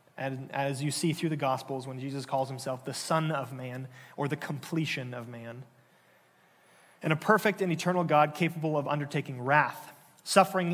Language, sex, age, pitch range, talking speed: English, male, 30-49, 135-165 Hz, 175 wpm